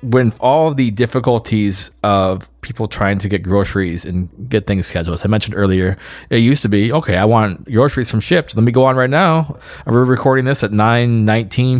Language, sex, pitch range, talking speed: English, male, 100-125 Hz, 210 wpm